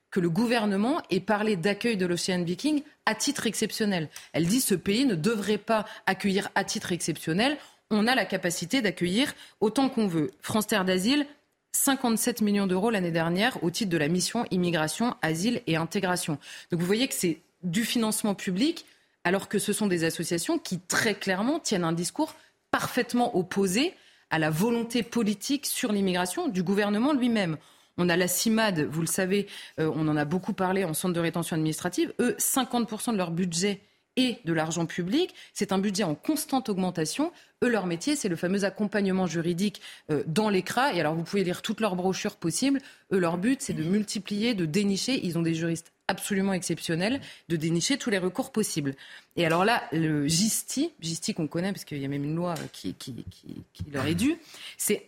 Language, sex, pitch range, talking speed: French, female, 175-235 Hz, 190 wpm